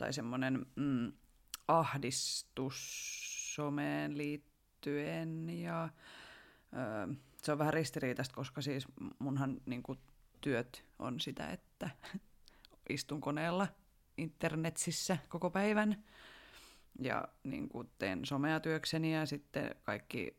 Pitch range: 135-160 Hz